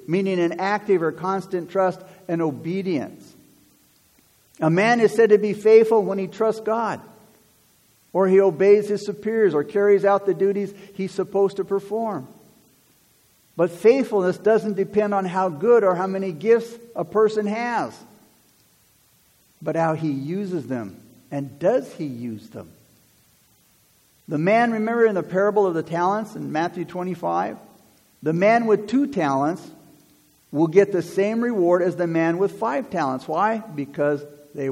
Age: 50-69